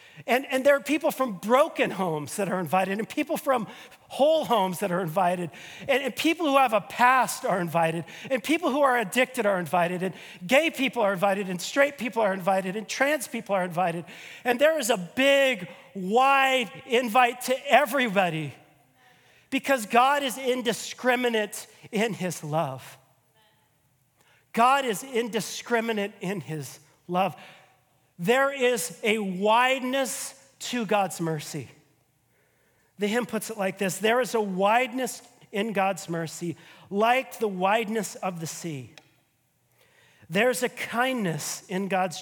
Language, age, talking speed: English, 40-59, 145 wpm